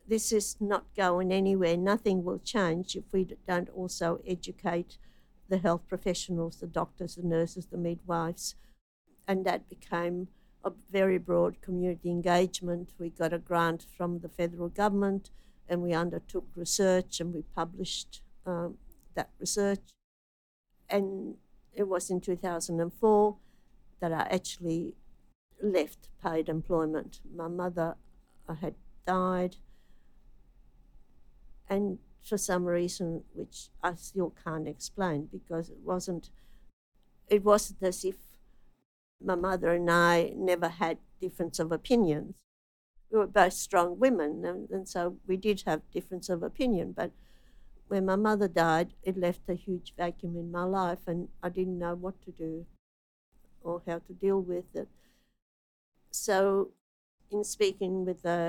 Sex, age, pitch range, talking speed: female, 60-79, 170-190 Hz, 135 wpm